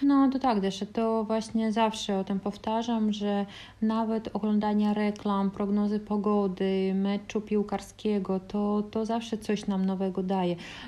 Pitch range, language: 190-215 Hz, Polish